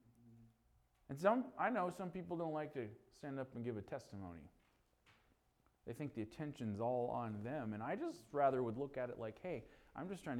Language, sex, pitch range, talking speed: English, male, 120-175 Hz, 200 wpm